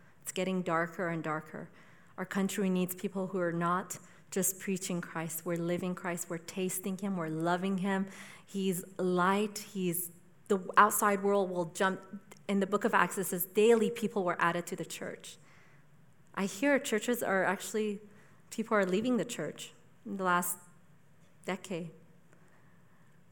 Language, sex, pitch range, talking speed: English, female, 170-195 Hz, 155 wpm